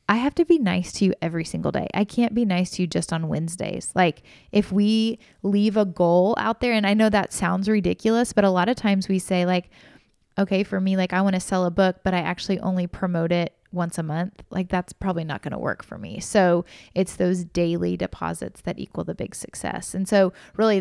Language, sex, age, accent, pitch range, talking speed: English, female, 20-39, American, 180-210 Hz, 235 wpm